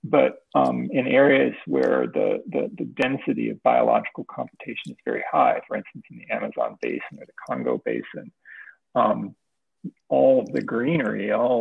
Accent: American